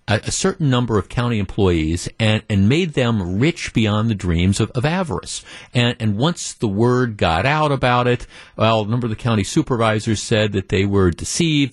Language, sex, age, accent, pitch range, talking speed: English, male, 50-69, American, 100-135 Hz, 195 wpm